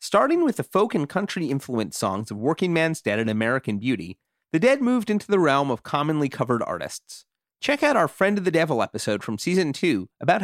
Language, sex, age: English, male, 30-49